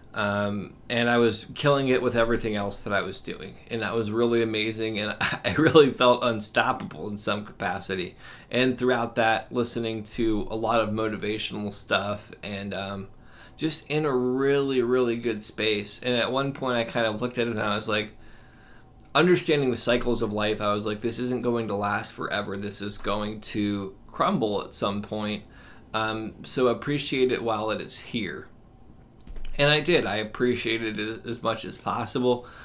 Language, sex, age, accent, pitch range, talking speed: English, male, 20-39, American, 105-125 Hz, 185 wpm